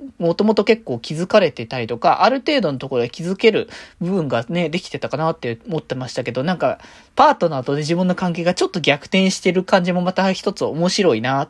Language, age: Japanese, 20-39